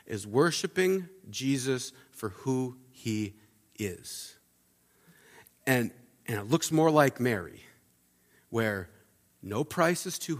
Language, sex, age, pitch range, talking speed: English, male, 40-59, 95-135 Hz, 110 wpm